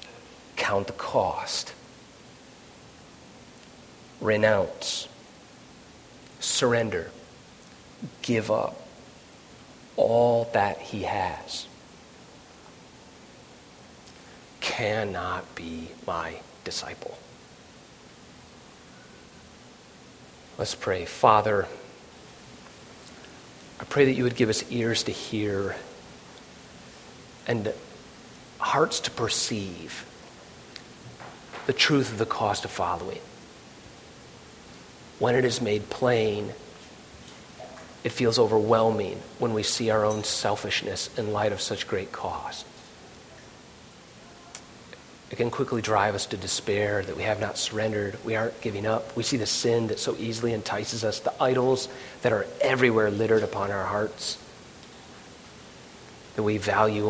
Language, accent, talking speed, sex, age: English, American, 100 wpm, male, 40-59